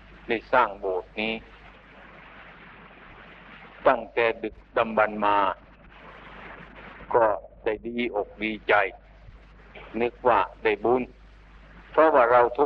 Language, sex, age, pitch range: Thai, male, 60-79, 110-125 Hz